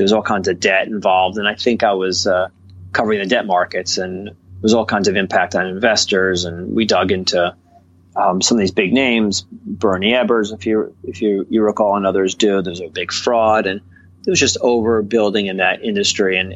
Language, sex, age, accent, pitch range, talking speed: English, male, 30-49, American, 90-110 Hz, 220 wpm